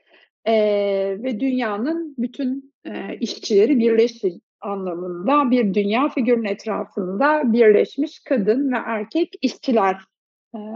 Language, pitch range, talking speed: Turkish, 200-275 Hz, 100 wpm